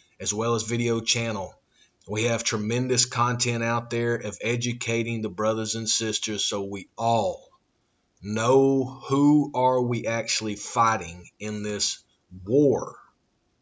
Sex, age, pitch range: male, 30-49, 110-125 Hz